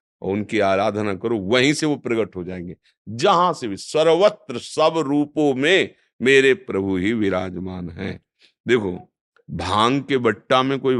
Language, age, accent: Hindi, 50-69, native